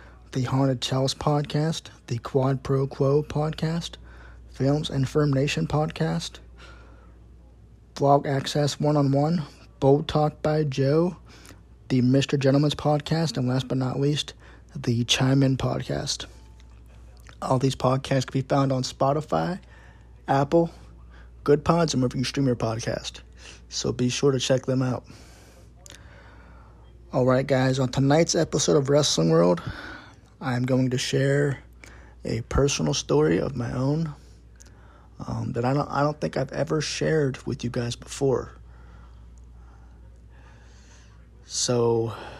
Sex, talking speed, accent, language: male, 130 wpm, American, English